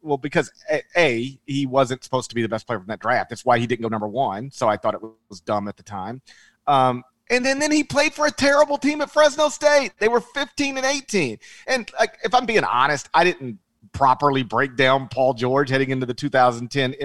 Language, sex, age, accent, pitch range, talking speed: English, male, 40-59, American, 120-160 Hz, 230 wpm